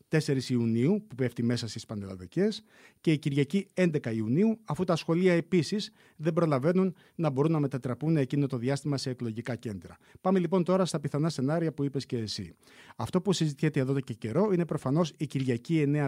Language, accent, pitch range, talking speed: Greek, native, 120-165 Hz, 185 wpm